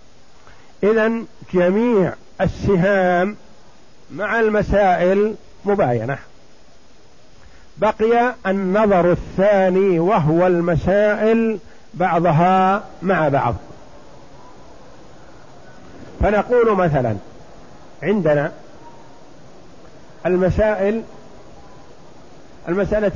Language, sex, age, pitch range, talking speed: Arabic, male, 50-69, 155-205 Hz, 50 wpm